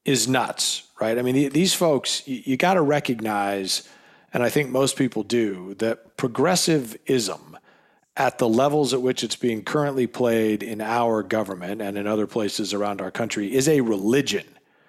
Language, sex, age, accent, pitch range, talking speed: English, male, 40-59, American, 110-140 Hz, 155 wpm